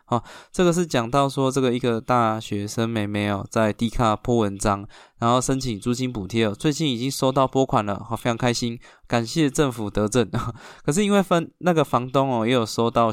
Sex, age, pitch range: male, 20-39, 105-135 Hz